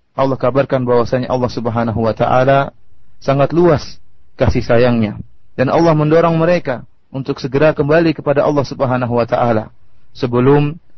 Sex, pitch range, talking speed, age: male, 125-165 Hz, 130 wpm, 30-49